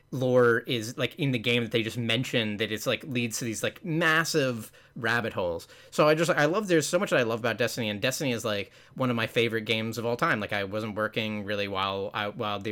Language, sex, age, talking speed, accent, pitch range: English, male, 20-39, 255 wpm, American, 110-140 Hz